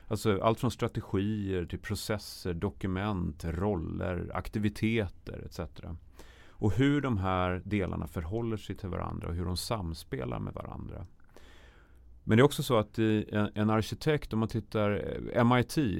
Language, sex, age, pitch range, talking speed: Swedish, male, 30-49, 85-110 Hz, 145 wpm